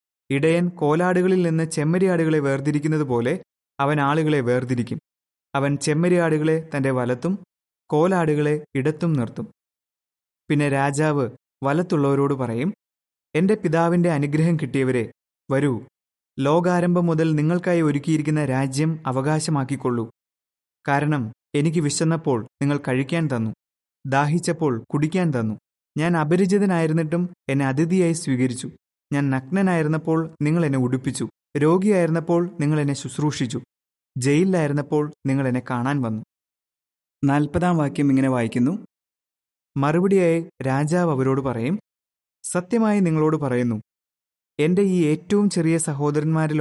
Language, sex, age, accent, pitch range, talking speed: Malayalam, male, 20-39, native, 135-170 Hz, 95 wpm